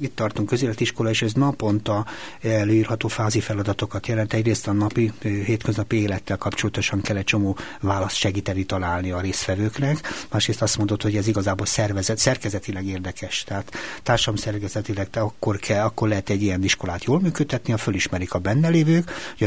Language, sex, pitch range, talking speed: Hungarian, male, 100-125 Hz, 155 wpm